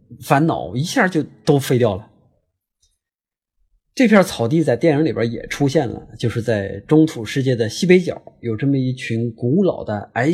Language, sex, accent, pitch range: Chinese, male, native, 115-180 Hz